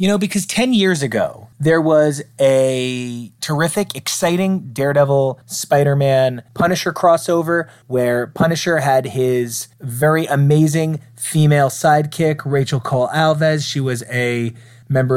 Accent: American